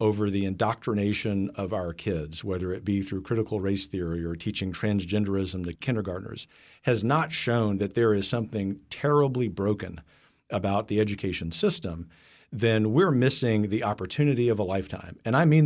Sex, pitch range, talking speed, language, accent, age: male, 100-125 Hz, 160 wpm, English, American, 50-69